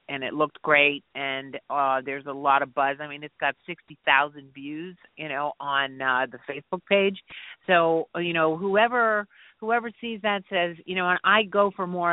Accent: American